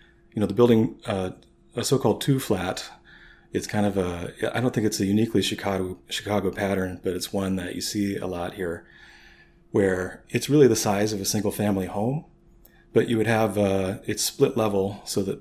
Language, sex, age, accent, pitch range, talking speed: English, male, 30-49, American, 95-105 Hz, 185 wpm